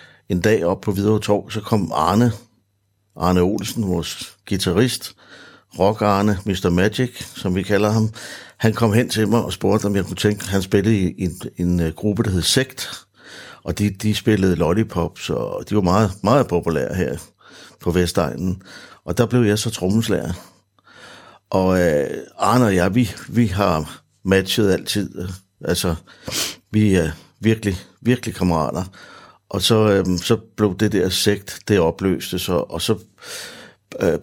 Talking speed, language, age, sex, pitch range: 160 wpm, Danish, 60-79, male, 90-110 Hz